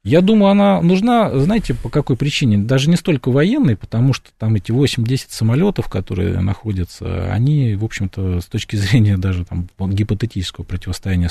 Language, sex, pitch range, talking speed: Russian, male, 90-125 Hz, 155 wpm